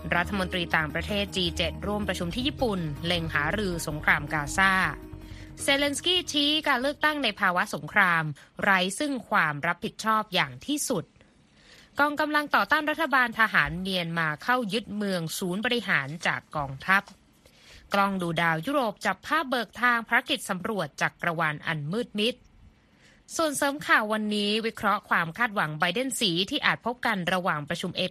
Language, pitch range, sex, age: Thai, 170-245 Hz, female, 20-39